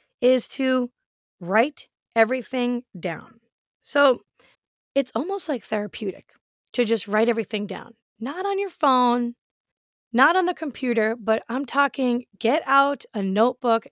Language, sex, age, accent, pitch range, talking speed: English, female, 30-49, American, 220-280 Hz, 130 wpm